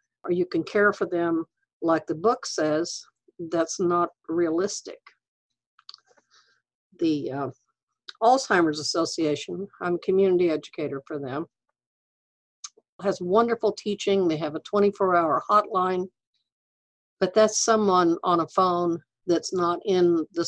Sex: female